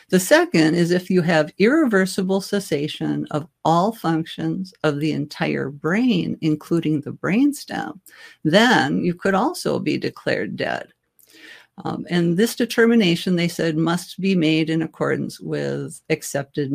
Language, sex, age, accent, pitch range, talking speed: English, female, 60-79, American, 155-195 Hz, 135 wpm